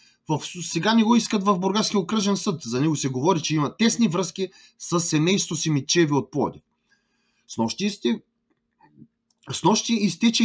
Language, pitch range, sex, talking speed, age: Bulgarian, 150-210 Hz, male, 145 wpm, 30-49